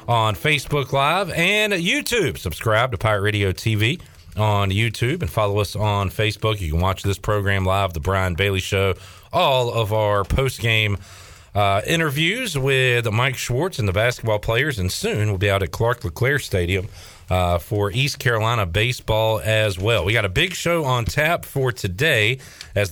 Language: English